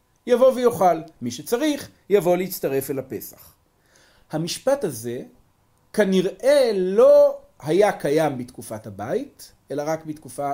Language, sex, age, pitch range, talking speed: Hebrew, male, 40-59, 120-180 Hz, 110 wpm